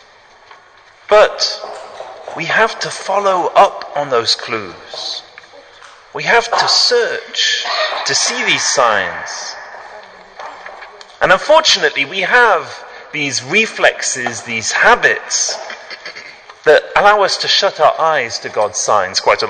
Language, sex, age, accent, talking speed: English, male, 30-49, British, 115 wpm